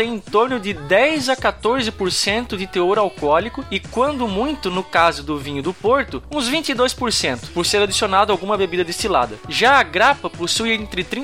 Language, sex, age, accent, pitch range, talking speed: Portuguese, male, 20-39, Brazilian, 175-235 Hz, 165 wpm